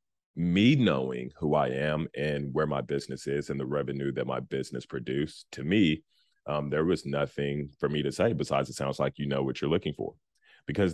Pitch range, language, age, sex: 70-85 Hz, English, 30-49, male